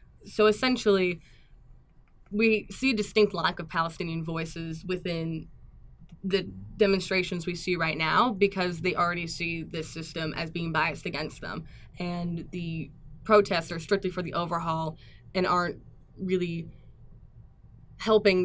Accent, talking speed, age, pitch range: American, 130 wpm, 10-29, 160-185 Hz